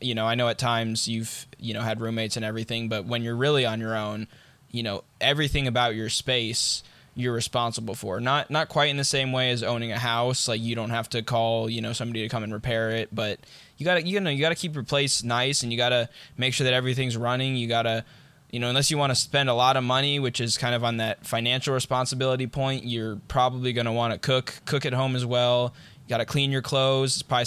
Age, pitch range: 10-29, 115-135 Hz